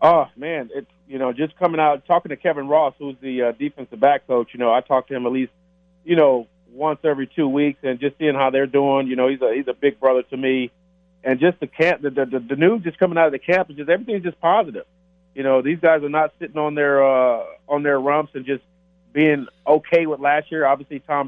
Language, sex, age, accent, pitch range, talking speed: English, male, 40-59, American, 135-175 Hz, 255 wpm